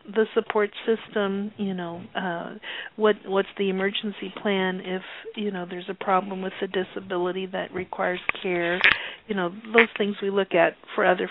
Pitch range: 180-210 Hz